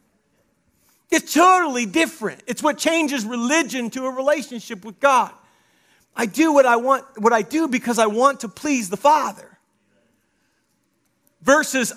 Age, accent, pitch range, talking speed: 40-59, American, 235-295 Hz, 140 wpm